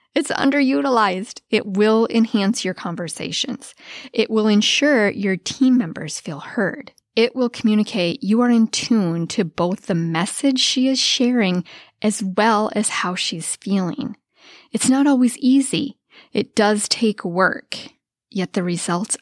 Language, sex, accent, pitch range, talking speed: English, female, American, 190-255 Hz, 145 wpm